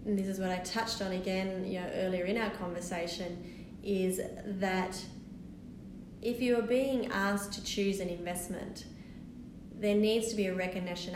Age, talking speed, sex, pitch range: 30-49, 165 wpm, female, 185-200 Hz